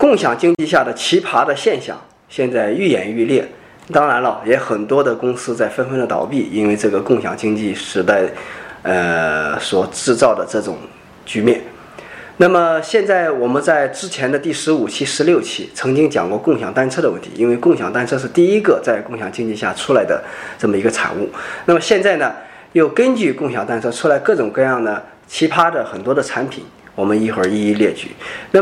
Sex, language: male, Chinese